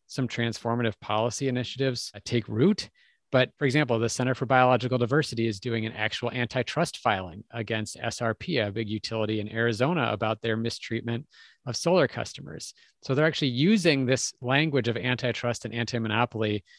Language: English